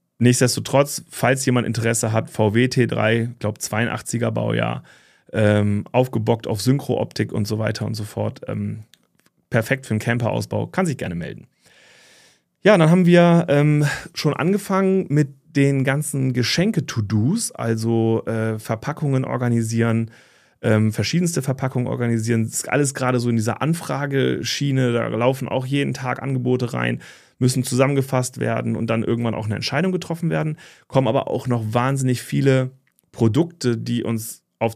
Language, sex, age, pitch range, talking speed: German, male, 30-49, 115-135 Hz, 145 wpm